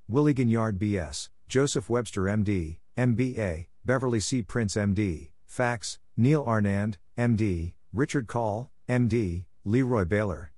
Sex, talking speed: male, 115 wpm